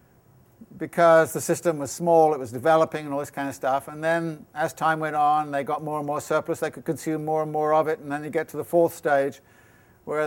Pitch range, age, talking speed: 130-160 Hz, 60-79, 250 wpm